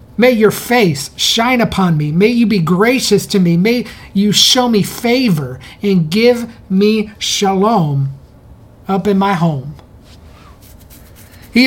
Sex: male